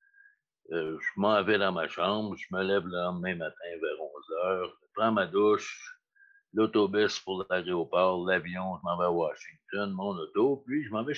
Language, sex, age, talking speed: French, male, 60-79, 190 wpm